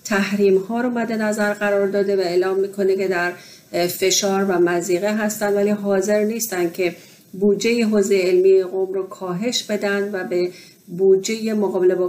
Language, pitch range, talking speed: Persian, 185-205 Hz, 160 wpm